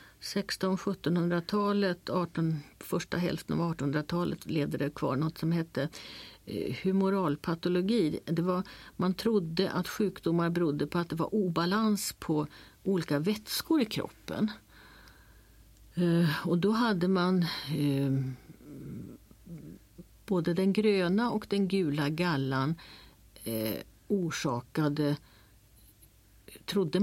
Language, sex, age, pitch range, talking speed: Swedish, female, 50-69, 140-190 Hz, 100 wpm